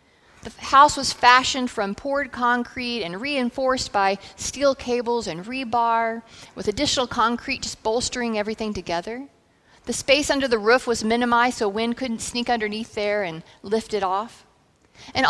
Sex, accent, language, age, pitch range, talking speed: female, American, English, 40-59, 210-260 Hz, 155 wpm